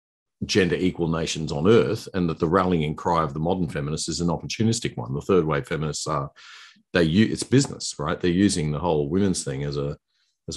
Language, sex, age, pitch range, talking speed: English, male, 50-69, 80-115 Hz, 200 wpm